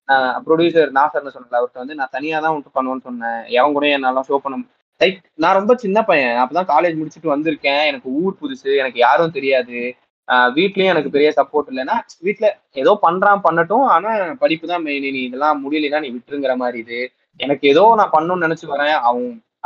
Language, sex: Tamil, male